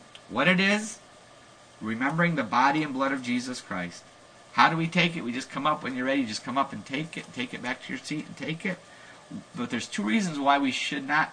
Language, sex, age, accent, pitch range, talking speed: English, male, 50-69, American, 130-185 Hz, 245 wpm